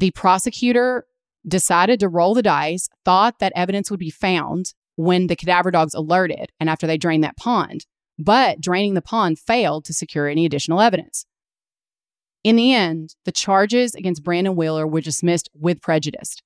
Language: English